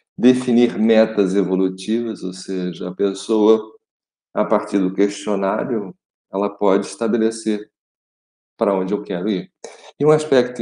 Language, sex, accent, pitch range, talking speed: Portuguese, male, Brazilian, 95-115 Hz, 125 wpm